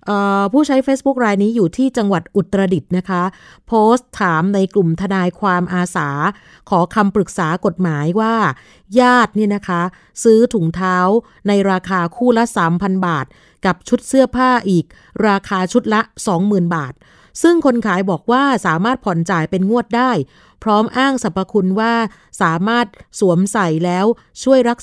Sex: female